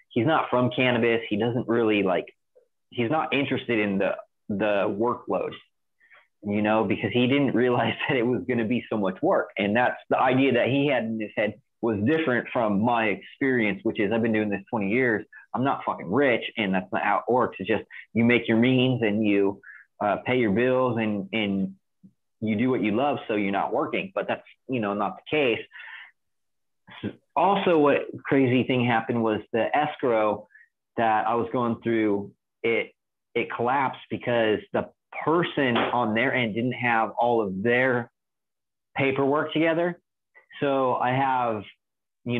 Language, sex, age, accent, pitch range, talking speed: English, male, 30-49, American, 110-130 Hz, 175 wpm